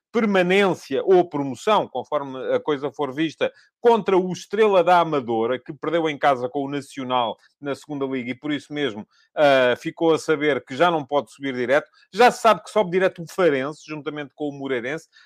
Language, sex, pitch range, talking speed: English, male, 145-190 Hz, 195 wpm